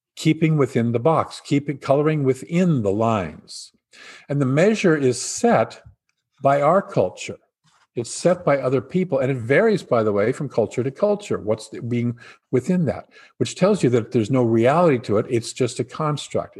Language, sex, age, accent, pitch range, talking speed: English, male, 50-69, American, 135-210 Hz, 180 wpm